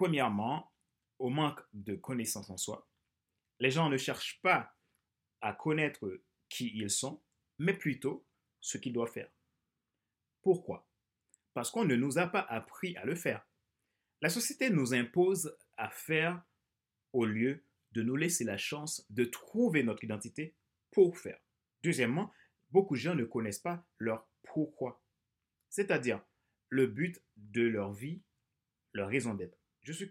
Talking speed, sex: 145 wpm, male